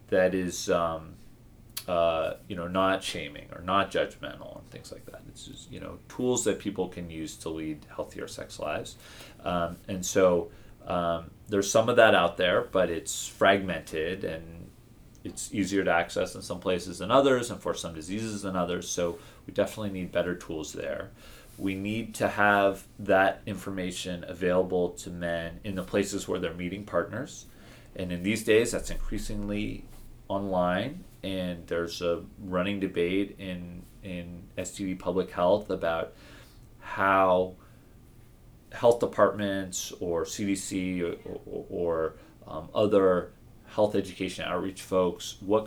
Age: 30-49